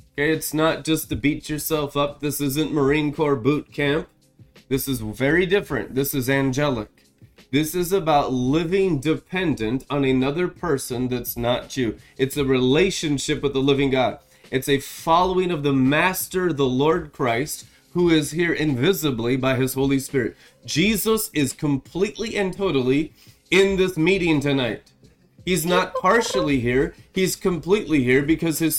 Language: English